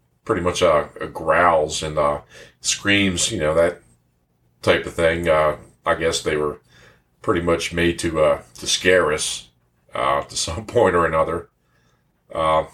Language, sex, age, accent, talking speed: English, male, 40-59, American, 150 wpm